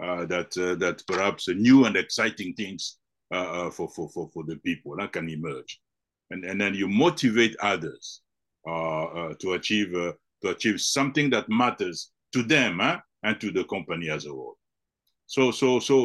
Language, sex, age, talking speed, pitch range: English, male, 60-79, 185 wpm, 100-130 Hz